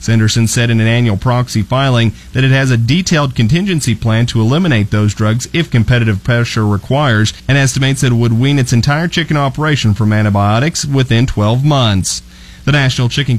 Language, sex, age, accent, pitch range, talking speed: English, male, 30-49, American, 110-135 Hz, 175 wpm